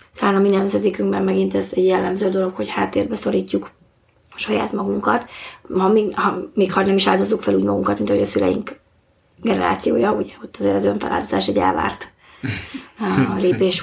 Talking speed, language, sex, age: 165 wpm, Hungarian, female, 20-39